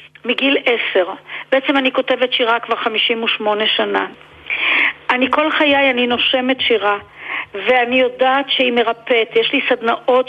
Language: Hebrew